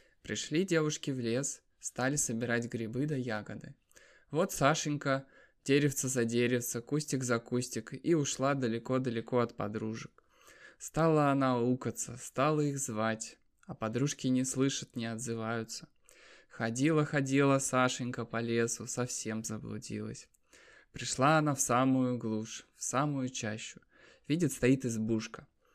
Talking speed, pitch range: 120 wpm, 115-140 Hz